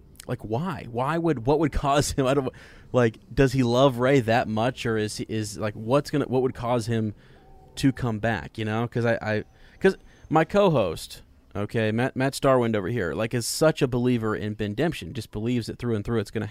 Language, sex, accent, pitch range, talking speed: English, male, American, 110-125 Hz, 215 wpm